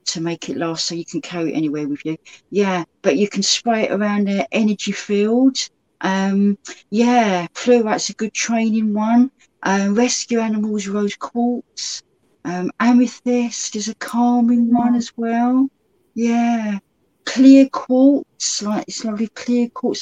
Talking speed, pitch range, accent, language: 150 wpm, 195-245 Hz, British, English